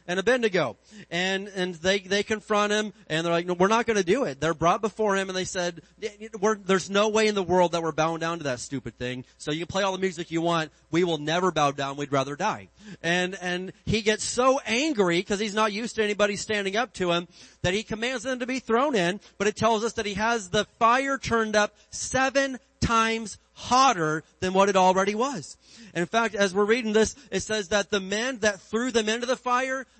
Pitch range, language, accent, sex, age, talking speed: 170-215 Hz, English, American, male, 30-49, 235 wpm